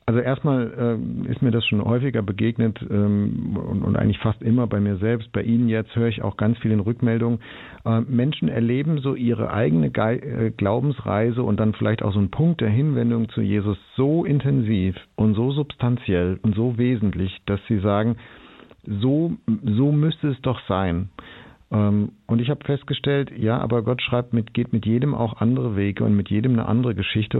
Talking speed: 185 wpm